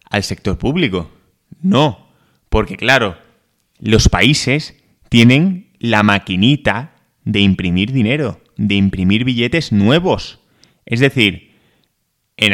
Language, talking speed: Spanish, 100 wpm